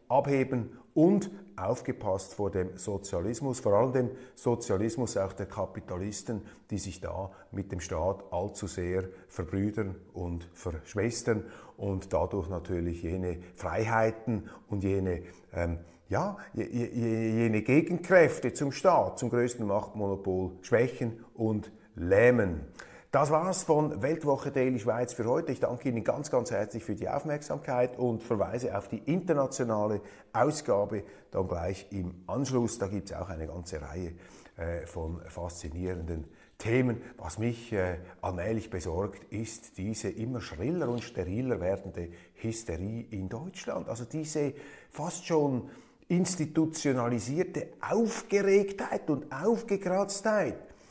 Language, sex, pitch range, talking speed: German, male, 95-130 Hz, 125 wpm